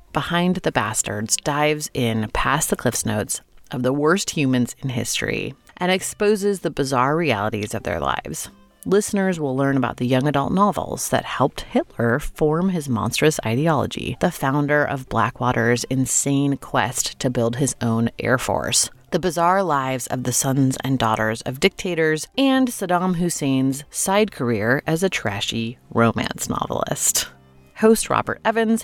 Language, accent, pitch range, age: English, American, 125-170 Hz, 30-49